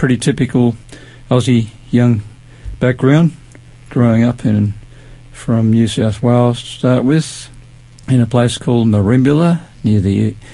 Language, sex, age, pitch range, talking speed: English, male, 50-69, 115-125 Hz, 125 wpm